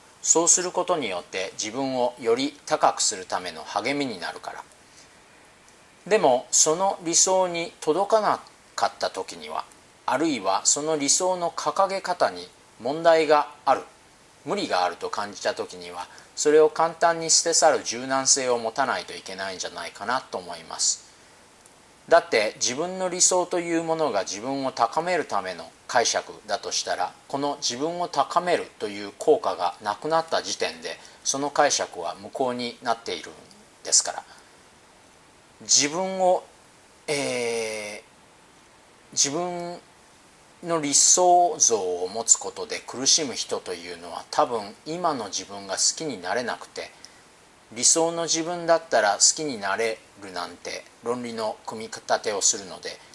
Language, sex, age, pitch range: Japanese, male, 40-59, 125-175 Hz